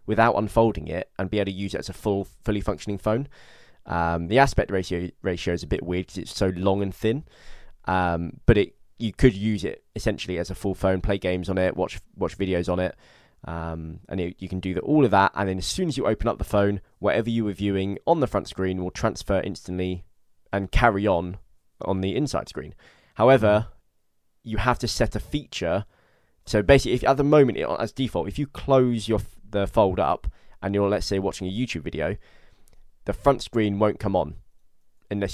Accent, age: British, 20-39